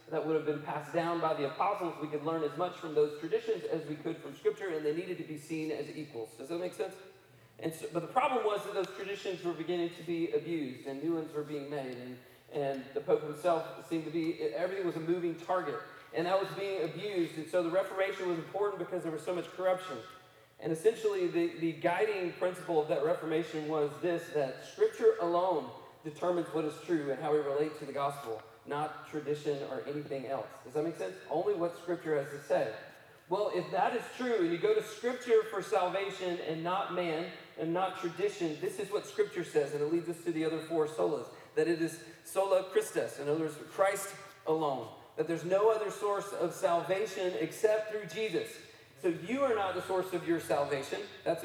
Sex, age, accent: male, 40-59, American